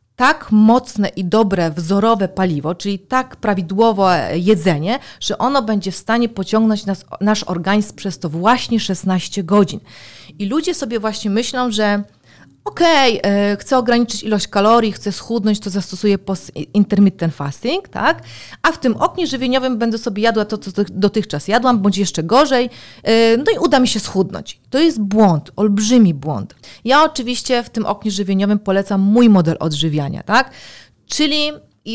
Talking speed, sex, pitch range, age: 150 wpm, female, 190-240 Hz, 30-49